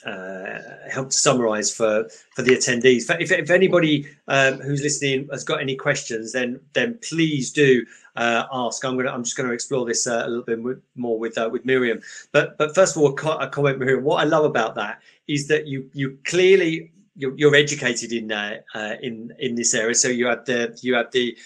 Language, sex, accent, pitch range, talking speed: English, male, British, 130-170 Hz, 220 wpm